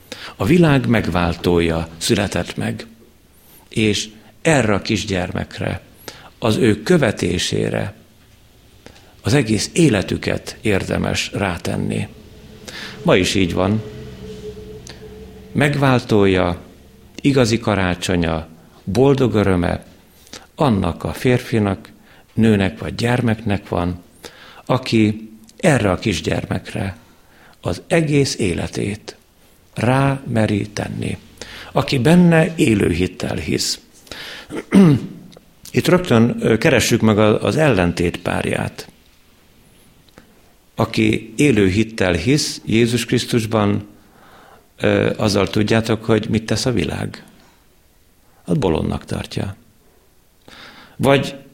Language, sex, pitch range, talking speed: Hungarian, male, 90-120 Hz, 85 wpm